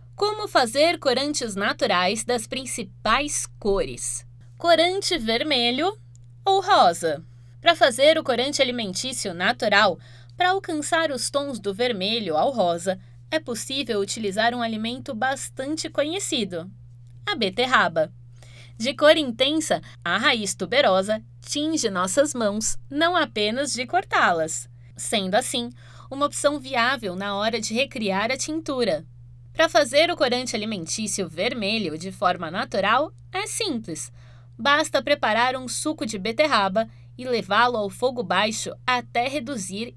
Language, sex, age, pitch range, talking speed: Portuguese, female, 20-39, 170-280 Hz, 125 wpm